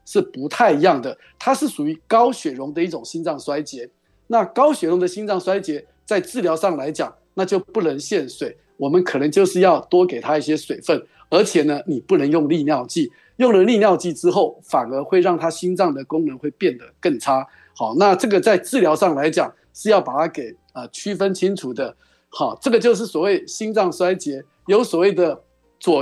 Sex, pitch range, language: male, 155-225 Hz, Chinese